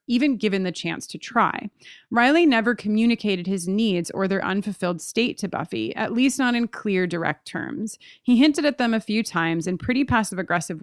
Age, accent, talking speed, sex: 30-49, American, 190 wpm, female